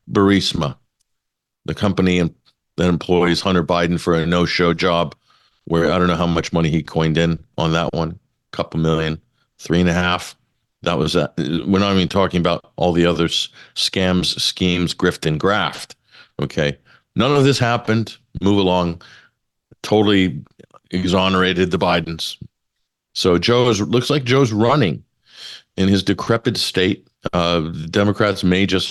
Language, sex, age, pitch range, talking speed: English, male, 50-69, 90-105 Hz, 150 wpm